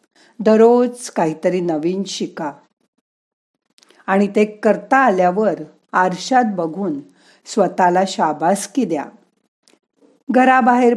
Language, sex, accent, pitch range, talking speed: Marathi, female, native, 180-235 Hz, 75 wpm